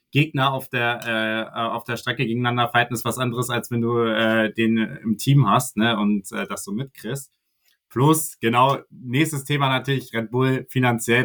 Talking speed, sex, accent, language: 180 wpm, male, German, German